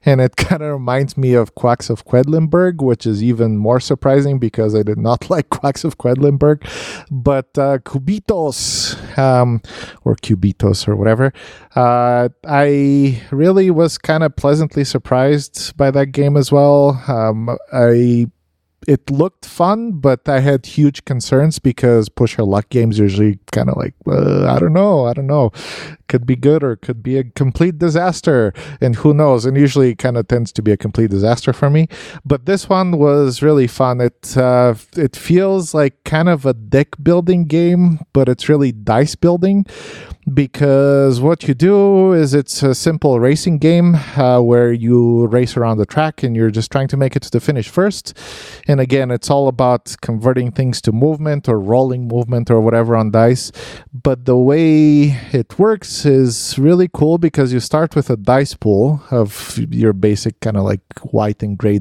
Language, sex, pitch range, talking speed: English, male, 120-150 Hz, 180 wpm